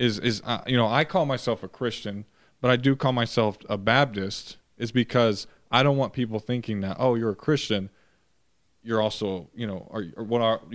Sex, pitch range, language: male, 100-120 Hz, English